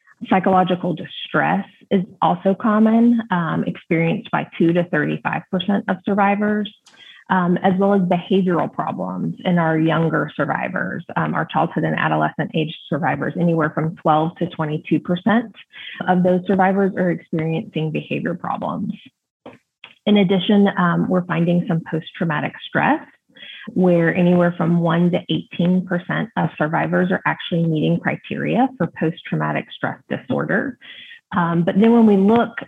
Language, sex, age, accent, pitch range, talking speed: English, female, 30-49, American, 170-210 Hz, 135 wpm